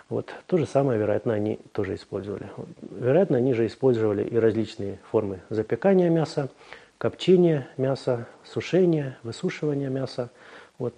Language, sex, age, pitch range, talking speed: Russian, male, 30-49, 110-135 Hz, 130 wpm